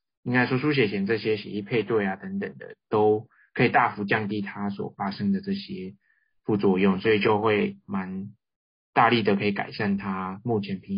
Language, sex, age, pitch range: Chinese, male, 20-39, 100-125 Hz